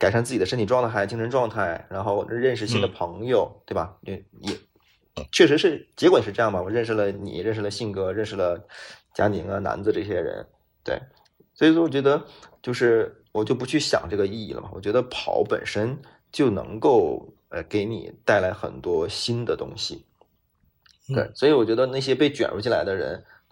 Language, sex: Chinese, male